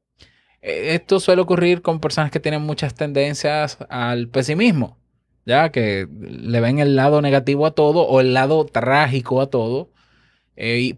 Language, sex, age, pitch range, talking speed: Spanish, male, 20-39, 105-140 Hz, 150 wpm